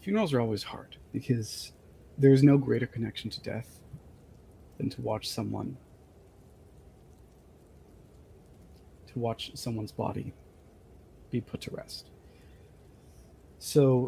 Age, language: 30-49, English